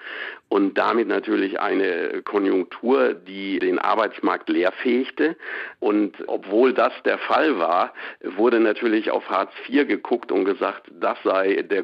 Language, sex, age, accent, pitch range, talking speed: German, male, 60-79, German, 330-390 Hz, 130 wpm